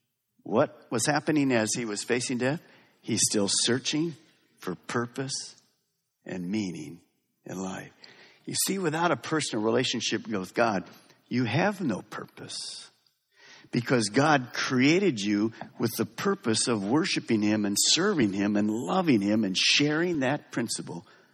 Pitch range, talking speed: 110-150 Hz, 140 wpm